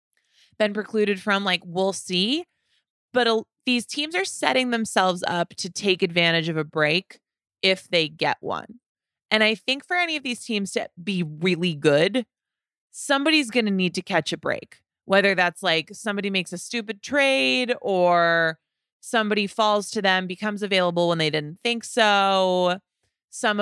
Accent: American